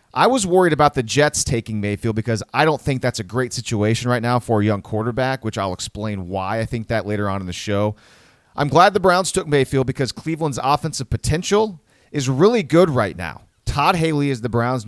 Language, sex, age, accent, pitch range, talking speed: English, male, 30-49, American, 105-135 Hz, 220 wpm